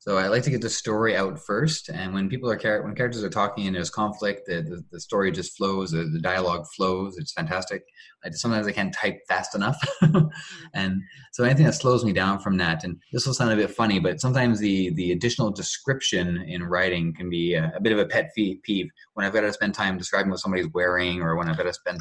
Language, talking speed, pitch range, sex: English, 245 wpm, 90-130 Hz, male